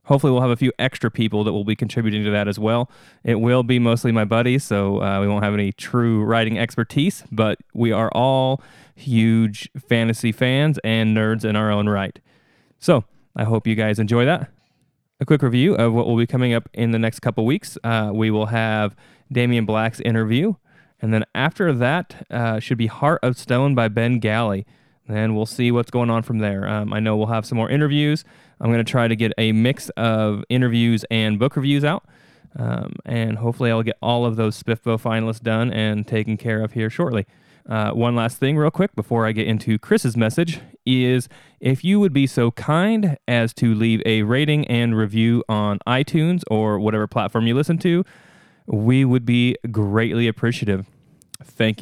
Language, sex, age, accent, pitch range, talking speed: English, male, 20-39, American, 110-130 Hz, 200 wpm